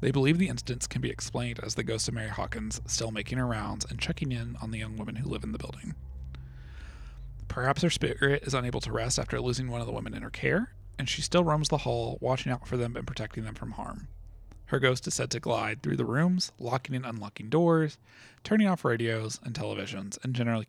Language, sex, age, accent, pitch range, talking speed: English, male, 30-49, American, 105-135 Hz, 230 wpm